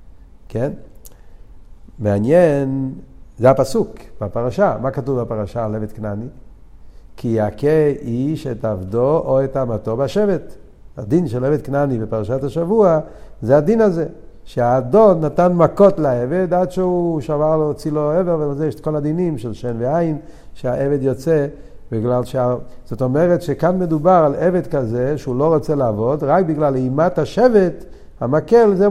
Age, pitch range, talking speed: 50-69, 120-170 Hz, 145 wpm